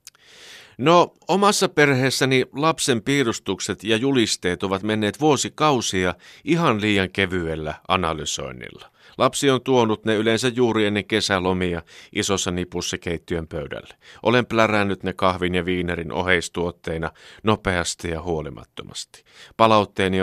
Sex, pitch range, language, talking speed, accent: male, 90-120 Hz, Finnish, 110 wpm, native